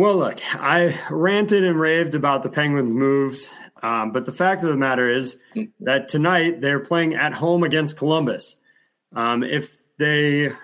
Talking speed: 165 wpm